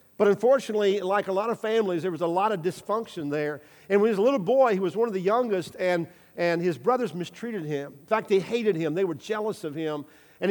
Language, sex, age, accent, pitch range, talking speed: English, male, 50-69, American, 170-220 Hz, 250 wpm